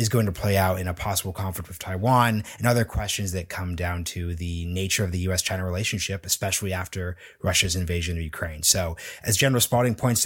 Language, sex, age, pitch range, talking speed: English, male, 30-49, 90-110 Hz, 205 wpm